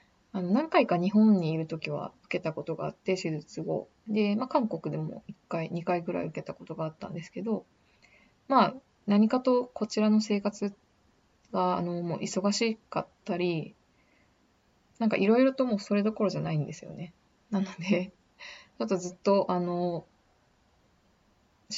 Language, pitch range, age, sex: Japanese, 170-210 Hz, 20-39, female